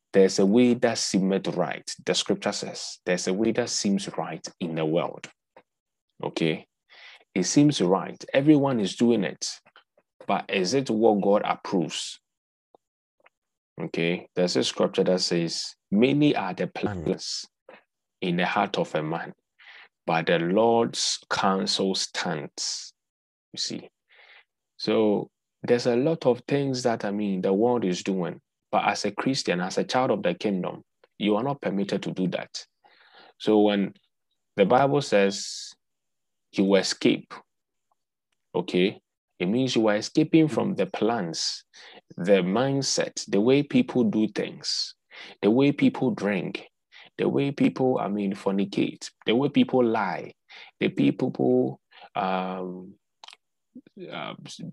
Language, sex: English, male